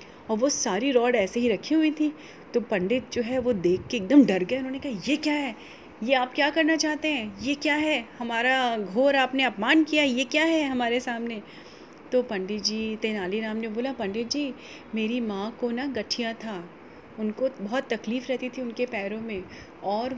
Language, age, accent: Hindi, 30-49, native